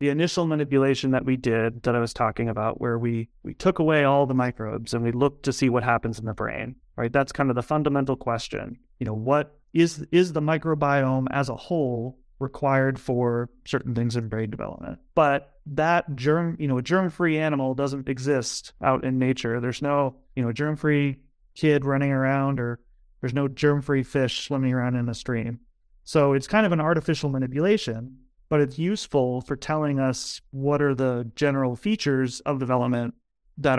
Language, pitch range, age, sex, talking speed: English, 125-150 Hz, 30-49, male, 185 wpm